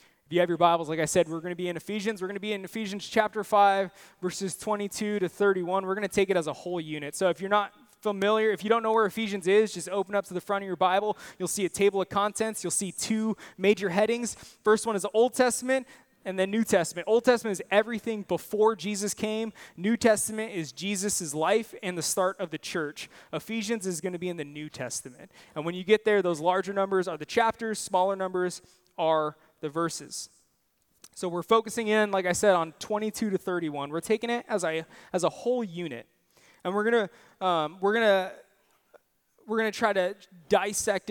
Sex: male